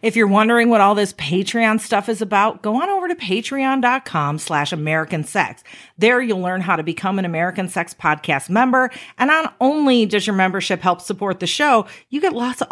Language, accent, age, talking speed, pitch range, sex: English, American, 40-59, 205 wpm, 165-255 Hz, female